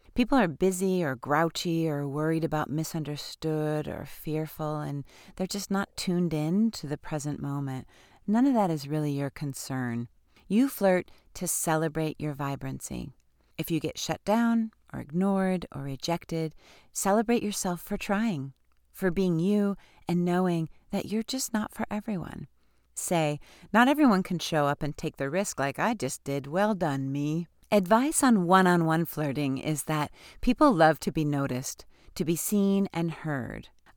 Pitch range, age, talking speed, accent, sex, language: 145-190 Hz, 40-59, 165 wpm, American, female, English